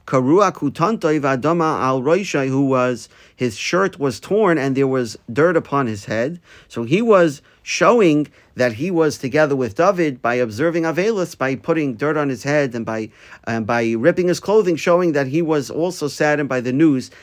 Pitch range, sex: 125-165 Hz, male